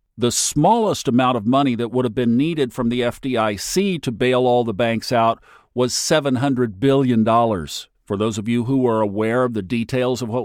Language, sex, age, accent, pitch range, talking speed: English, male, 50-69, American, 110-135 Hz, 195 wpm